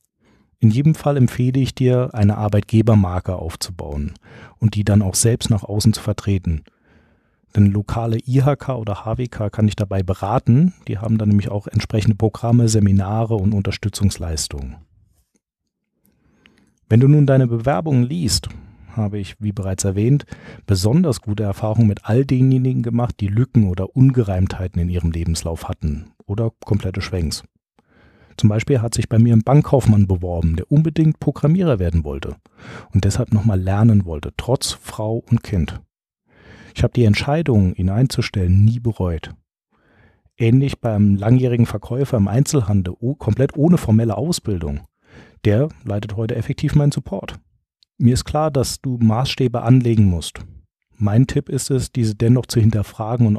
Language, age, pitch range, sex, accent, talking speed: German, 40-59, 100-125 Hz, male, German, 145 wpm